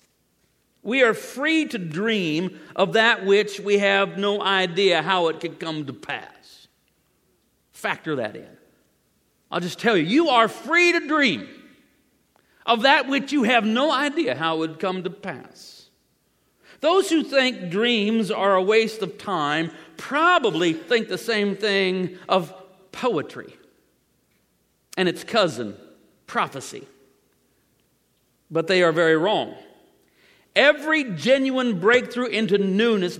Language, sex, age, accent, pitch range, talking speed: English, male, 50-69, American, 175-235 Hz, 130 wpm